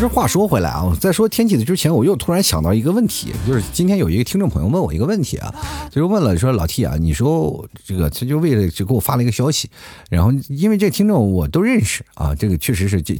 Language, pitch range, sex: Chinese, 85-130 Hz, male